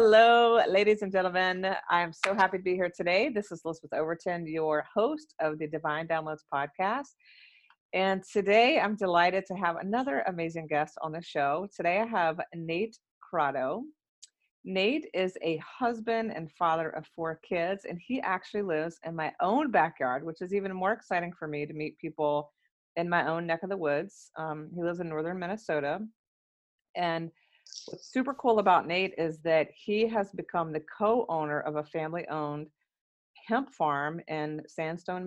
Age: 30-49